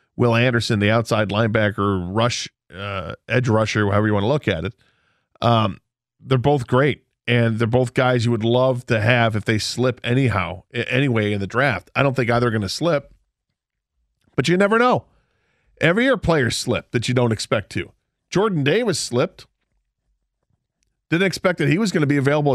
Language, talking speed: English, 185 wpm